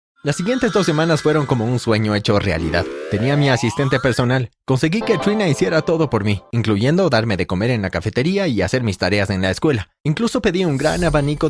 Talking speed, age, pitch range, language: 210 wpm, 30-49, 110-165 Hz, Spanish